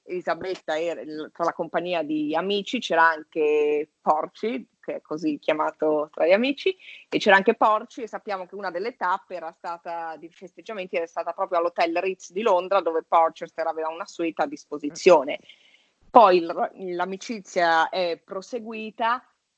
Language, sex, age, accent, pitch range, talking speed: Italian, female, 30-49, native, 170-195 Hz, 155 wpm